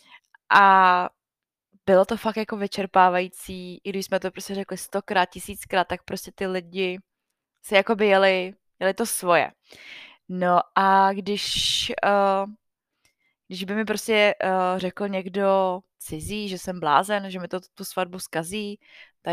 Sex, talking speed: female, 145 wpm